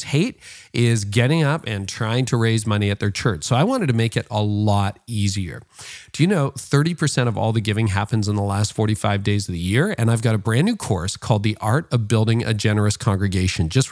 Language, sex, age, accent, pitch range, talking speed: English, male, 40-59, American, 105-130 Hz, 235 wpm